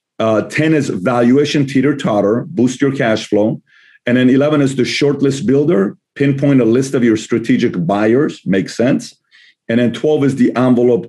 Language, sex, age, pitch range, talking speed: English, male, 50-69, 115-140 Hz, 170 wpm